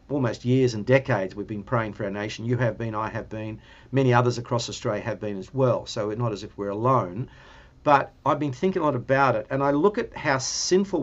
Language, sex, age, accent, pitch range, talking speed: English, male, 50-69, Australian, 115-140 Hz, 245 wpm